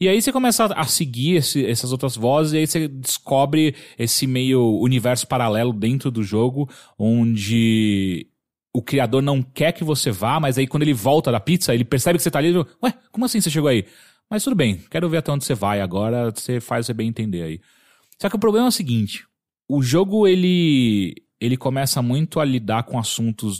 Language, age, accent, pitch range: English, 30-49, Brazilian, 110-155 Hz